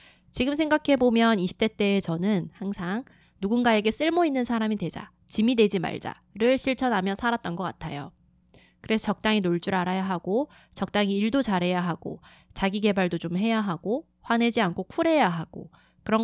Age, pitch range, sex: 20-39, 180-230 Hz, female